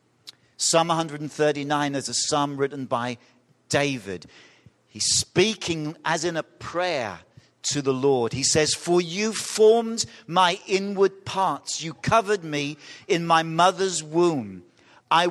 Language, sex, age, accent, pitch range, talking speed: English, male, 50-69, British, 135-180 Hz, 130 wpm